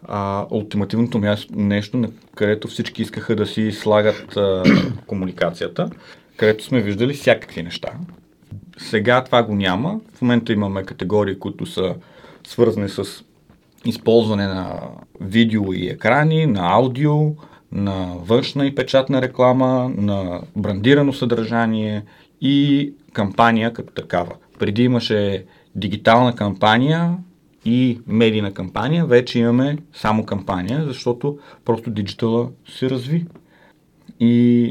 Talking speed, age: 115 wpm, 30-49